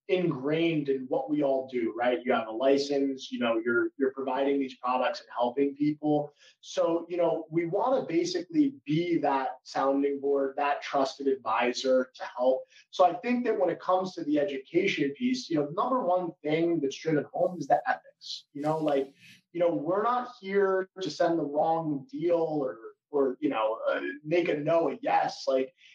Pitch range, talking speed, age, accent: 140-195 Hz, 195 wpm, 20-39, American